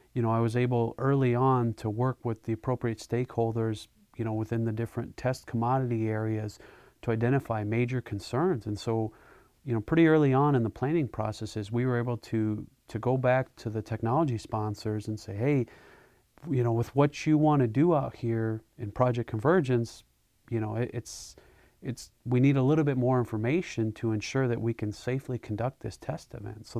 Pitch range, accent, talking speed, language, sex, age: 115-130 Hz, American, 195 wpm, English, male, 40-59